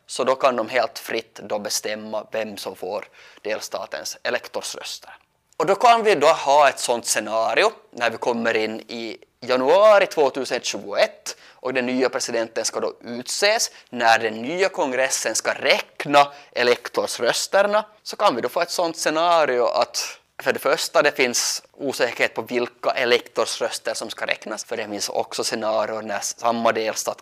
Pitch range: 120-165 Hz